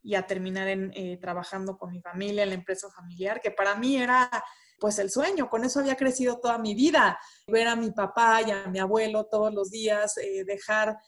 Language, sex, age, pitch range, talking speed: Spanish, female, 20-39, 205-245 Hz, 215 wpm